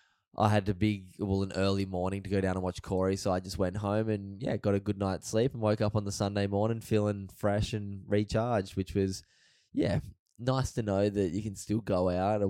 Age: 10-29